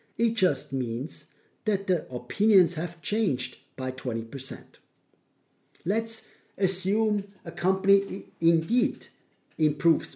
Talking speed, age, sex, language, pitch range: 95 wpm, 50-69, male, English, 130-190 Hz